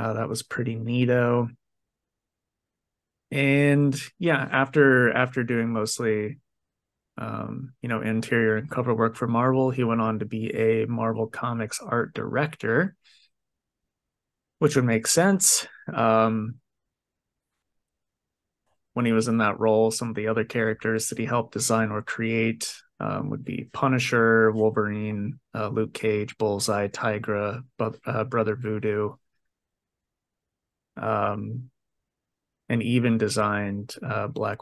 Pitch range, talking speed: 110-125 Hz, 120 wpm